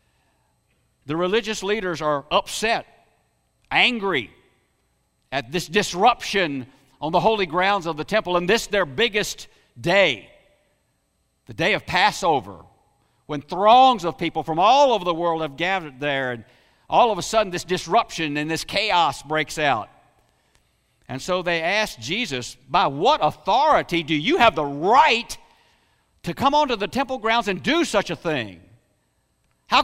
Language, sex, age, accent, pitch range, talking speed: English, male, 60-79, American, 115-195 Hz, 150 wpm